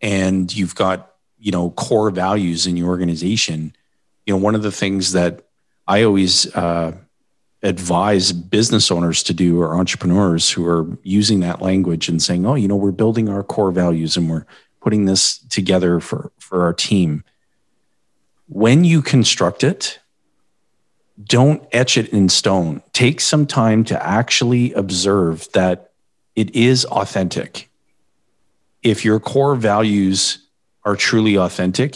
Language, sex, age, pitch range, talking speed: English, male, 40-59, 90-115 Hz, 145 wpm